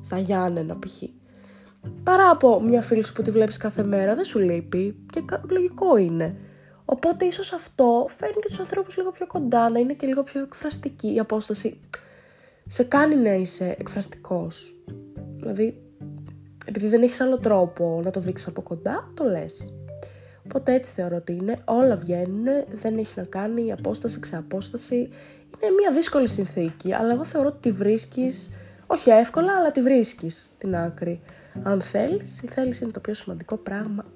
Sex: female